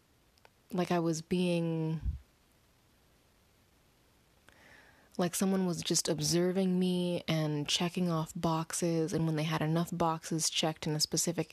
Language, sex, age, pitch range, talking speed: English, female, 20-39, 155-175 Hz, 125 wpm